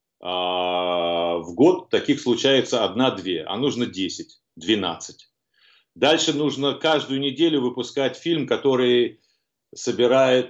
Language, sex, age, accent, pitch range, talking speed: Russian, male, 40-59, native, 115-155 Hz, 90 wpm